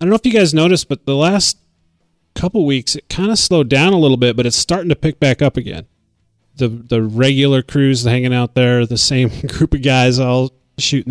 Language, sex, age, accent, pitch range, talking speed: English, male, 30-49, American, 115-135 Hz, 230 wpm